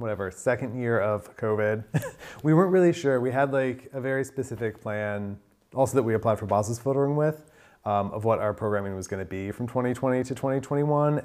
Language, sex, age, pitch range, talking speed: English, male, 30-49, 100-135 Hz, 195 wpm